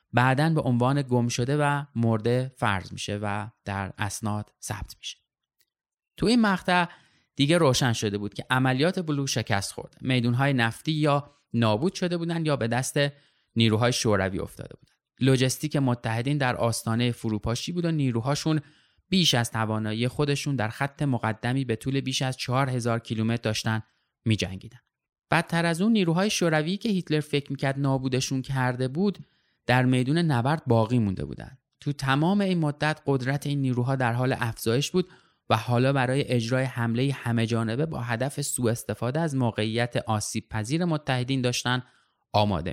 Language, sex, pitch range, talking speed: Persian, male, 115-150 Hz, 155 wpm